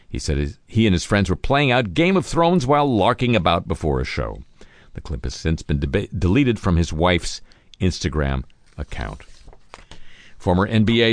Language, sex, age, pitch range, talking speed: English, male, 50-69, 80-110 Hz, 165 wpm